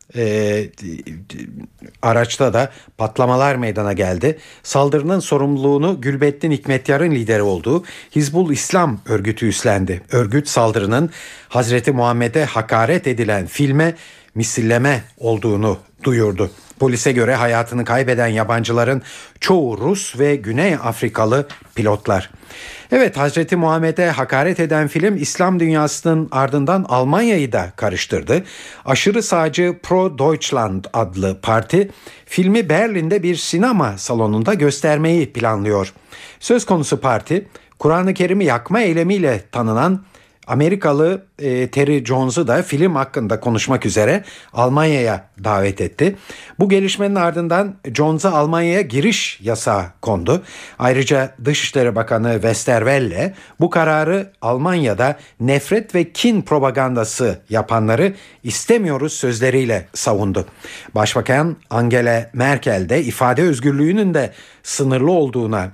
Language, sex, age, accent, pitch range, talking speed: Turkish, male, 50-69, native, 115-165 Hz, 100 wpm